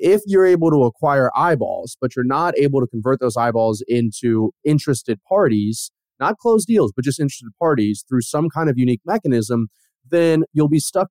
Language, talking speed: English, 185 wpm